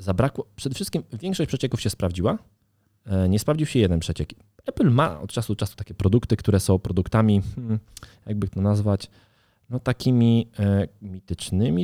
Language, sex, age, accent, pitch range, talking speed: Polish, male, 20-39, native, 90-115 Hz, 145 wpm